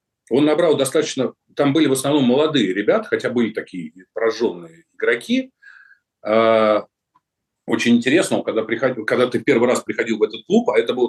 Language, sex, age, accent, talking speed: Russian, male, 40-59, native, 150 wpm